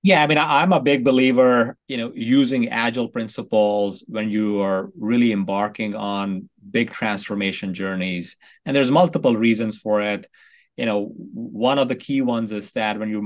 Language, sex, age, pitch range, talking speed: English, male, 30-49, 105-120 Hz, 170 wpm